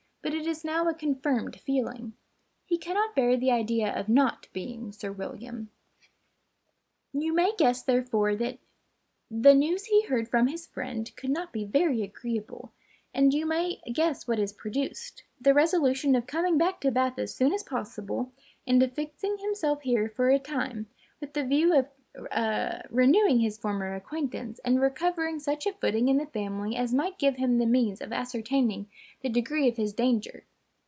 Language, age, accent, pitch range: English, 10-29, American, 230-300 Hz